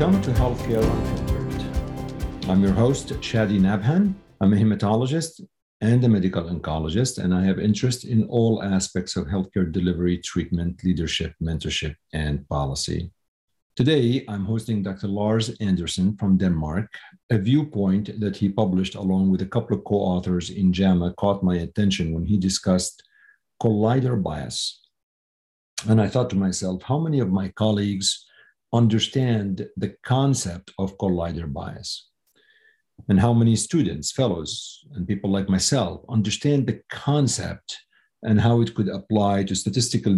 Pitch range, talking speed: 90-115 Hz, 140 wpm